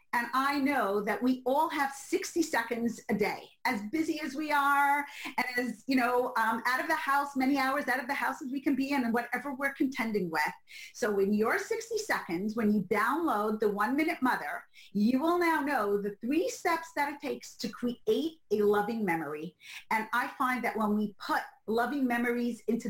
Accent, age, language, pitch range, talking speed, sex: American, 40-59, English, 220-290 Hz, 205 wpm, female